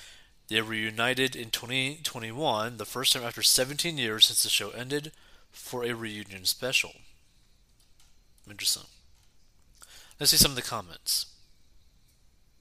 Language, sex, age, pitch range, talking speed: English, male, 30-49, 100-130 Hz, 125 wpm